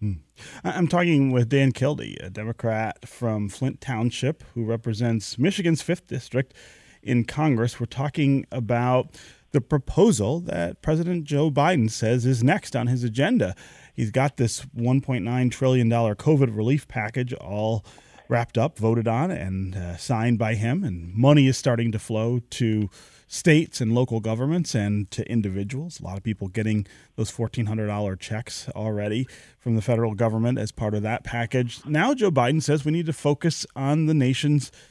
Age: 30-49